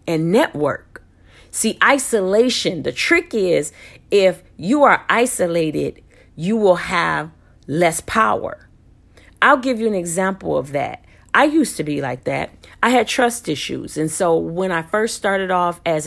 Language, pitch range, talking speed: English, 155-225 Hz, 155 wpm